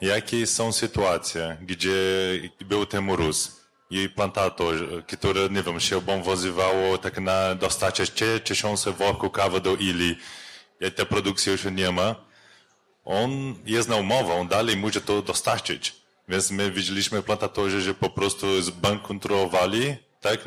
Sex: male